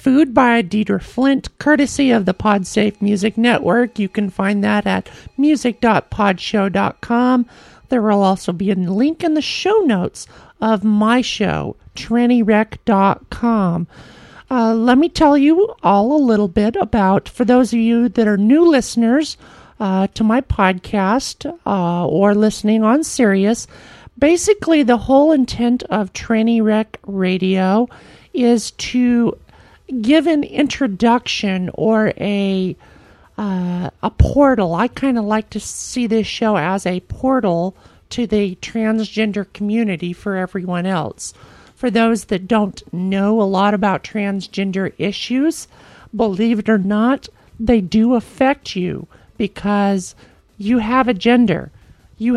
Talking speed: 135 wpm